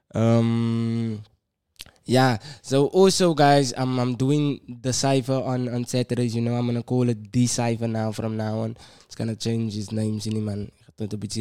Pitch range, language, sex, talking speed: 105-130 Hz, English, male, 185 wpm